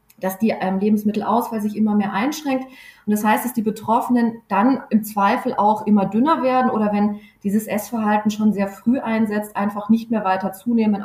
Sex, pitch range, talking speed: female, 205-240 Hz, 180 wpm